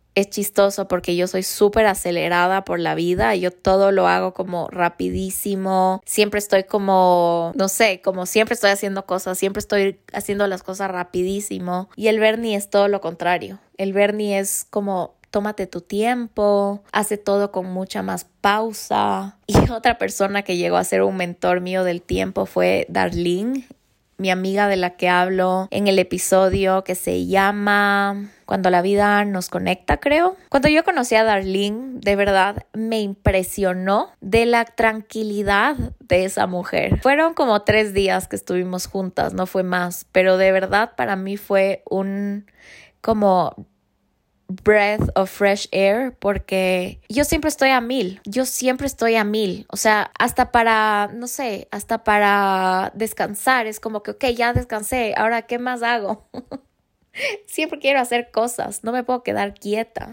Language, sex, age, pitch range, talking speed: Spanish, female, 20-39, 185-220 Hz, 160 wpm